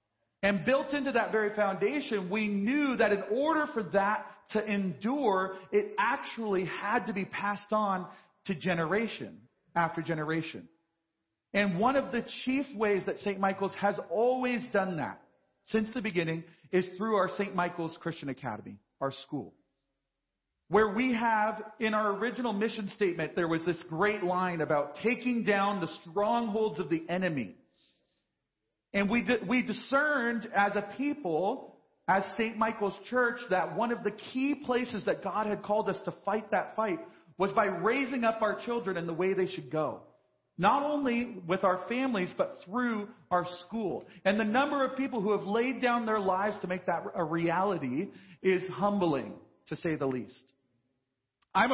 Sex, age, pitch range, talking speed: male, 40-59, 175-225 Hz, 165 wpm